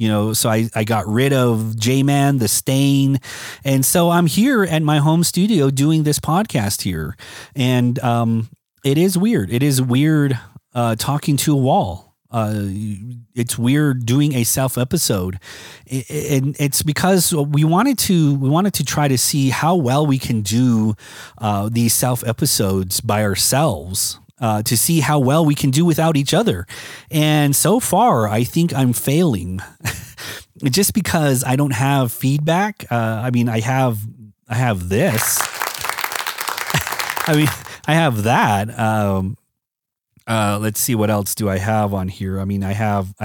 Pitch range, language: 110-150 Hz, English